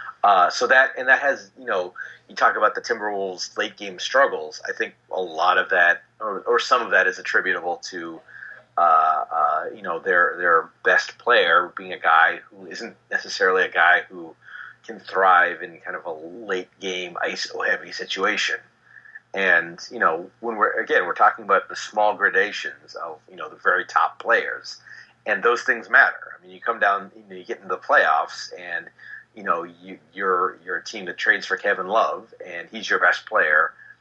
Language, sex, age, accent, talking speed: English, male, 30-49, American, 190 wpm